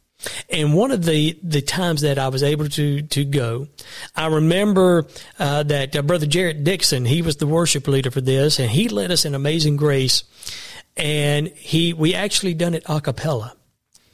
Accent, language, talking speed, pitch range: American, English, 185 wpm, 135-170 Hz